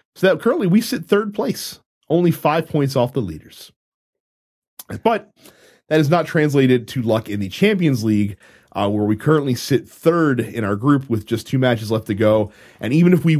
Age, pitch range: 30-49, 105-160 Hz